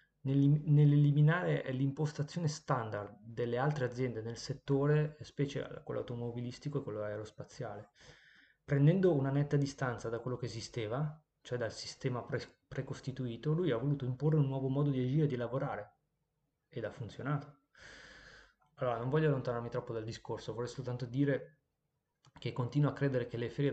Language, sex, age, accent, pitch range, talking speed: Italian, male, 20-39, native, 120-145 Hz, 145 wpm